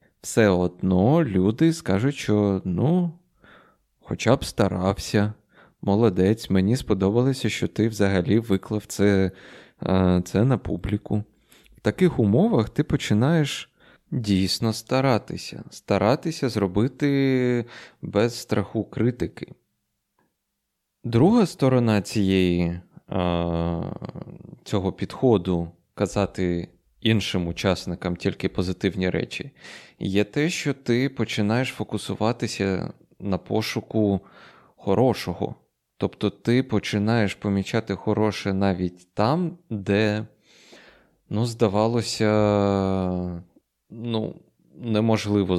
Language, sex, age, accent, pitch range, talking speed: Ukrainian, male, 20-39, native, 95-120 Hz, 85 wpm